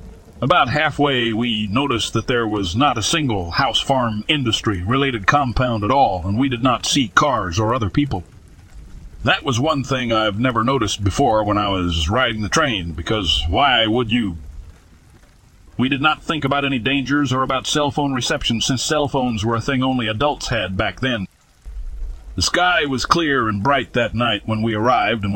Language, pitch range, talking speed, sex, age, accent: English, 100-130 Hz, 185 wpm, male, 50-69, American